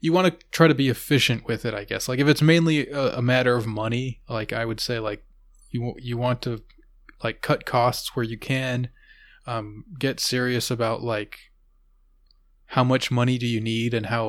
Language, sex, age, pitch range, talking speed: English, male, 20-39, 115-135 Hz, 195 wpm